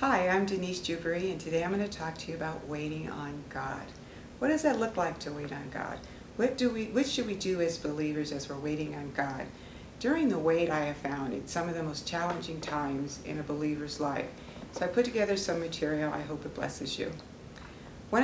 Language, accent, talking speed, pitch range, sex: English, American, 225 wpm, 155-190 Hz, female